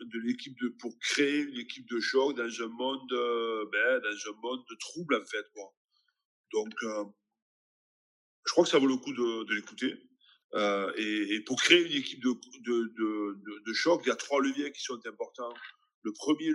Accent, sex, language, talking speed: French, male, French, 200 wpm